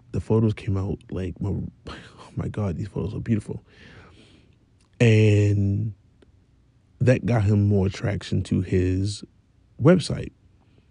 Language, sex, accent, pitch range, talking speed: English, male, American, 100-125 Hz, 115 wpm